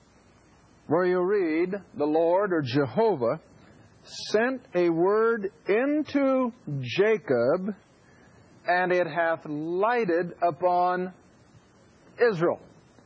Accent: American